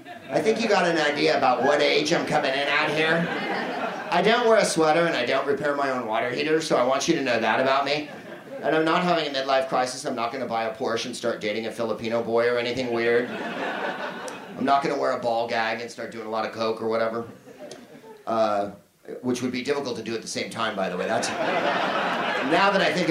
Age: 40-59